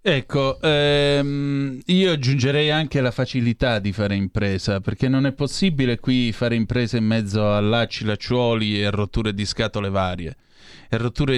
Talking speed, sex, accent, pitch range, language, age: 140 wpm, male, native, 110-140 Hz, Italian, 30-49